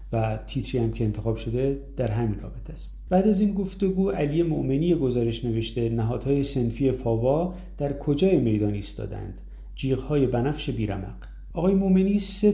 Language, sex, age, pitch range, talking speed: Persian, male, 30-49, 110-145 Hz, 165 wpm